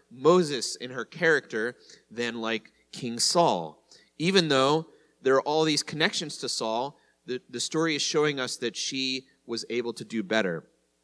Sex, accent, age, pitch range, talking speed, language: male, American, 30-49, 120-160 Hz, 165 wpm, English